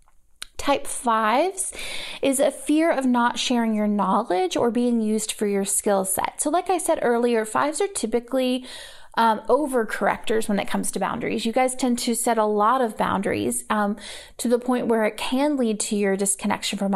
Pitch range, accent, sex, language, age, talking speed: 210-270 Hz, American, female, English, 30-49, 190 wpm